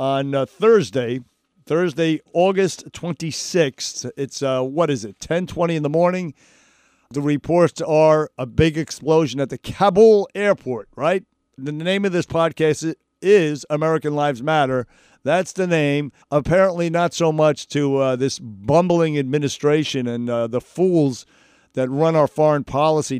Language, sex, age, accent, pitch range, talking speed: English, male, 50-69, American, 135-165 Hz, 145 wpm